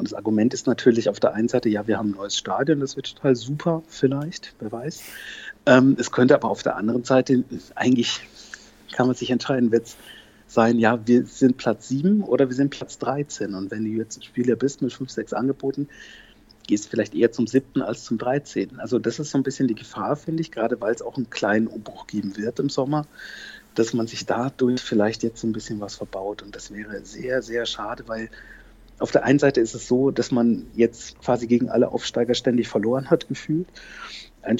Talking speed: 215 wpm